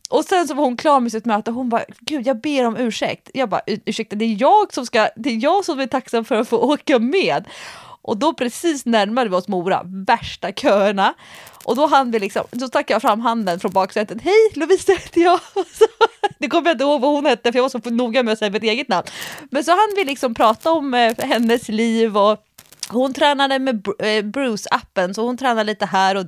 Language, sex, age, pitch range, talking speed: Swedish, female, 20-39, 215-295 Hz, 220 wpm